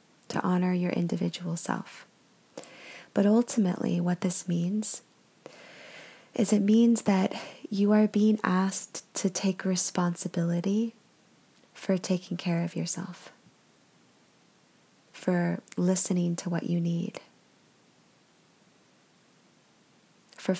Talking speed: 95 wpm